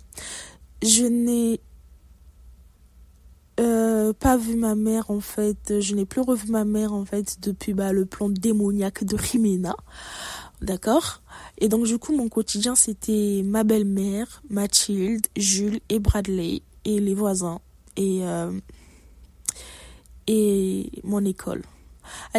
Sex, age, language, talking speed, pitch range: female, 20-39, French, 125 wpm, 195-225 Hz